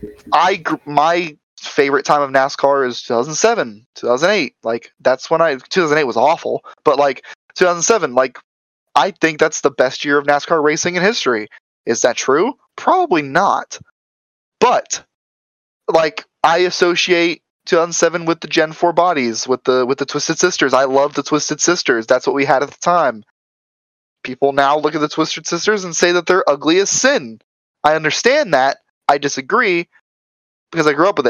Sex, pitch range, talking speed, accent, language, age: male, 135-175 Hz, 170 wpm, American, English, 10-29